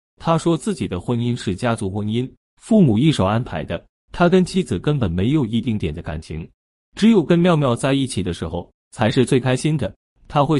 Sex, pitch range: male, 100-160 Hz